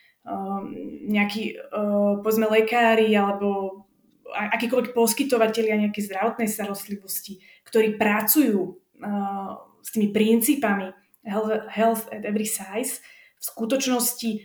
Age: 20-39